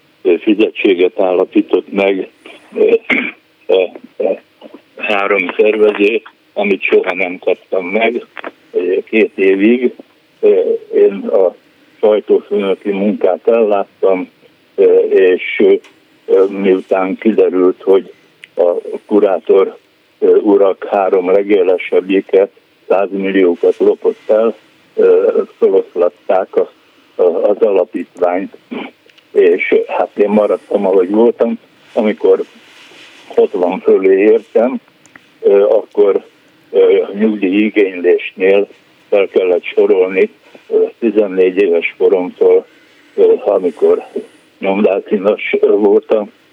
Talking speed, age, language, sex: 85 wpm, 60-79, Hungarian, male